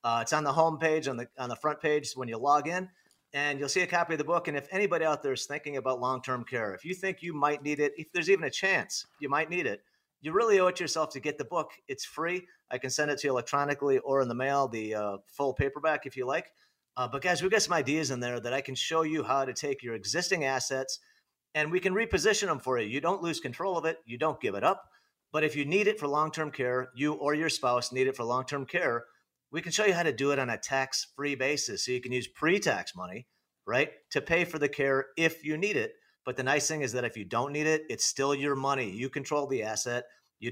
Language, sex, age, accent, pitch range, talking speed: English, male, 40-59, American, 130-160 Hz, 270 wpm